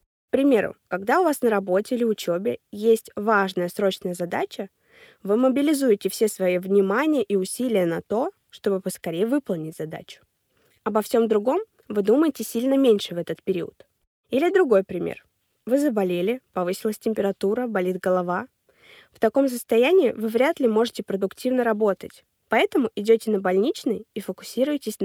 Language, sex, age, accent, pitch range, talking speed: Russian, female, 20-39, native, 190-250 Hz, 145 wpm